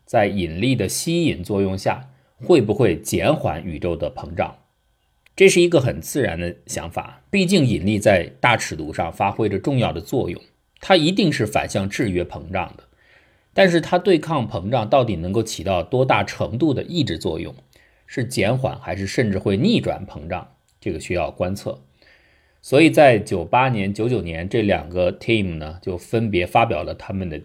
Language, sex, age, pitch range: Chinese, male, 50-69, 90-115 Hz